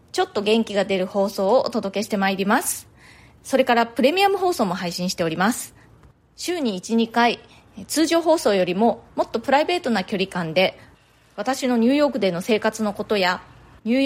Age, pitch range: 30-49, 190-265 Hz